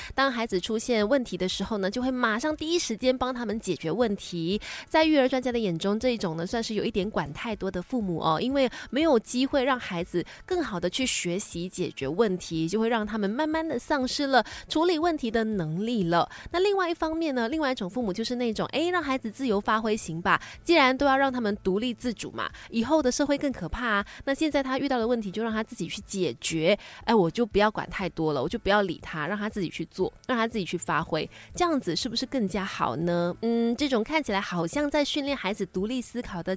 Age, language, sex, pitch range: 20-39, Chinese, female, 185-255 Hz